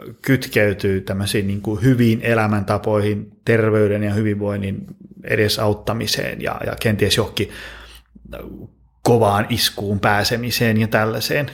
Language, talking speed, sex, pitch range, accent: Finnish, 95 wpm, male, 110-150 Hz, native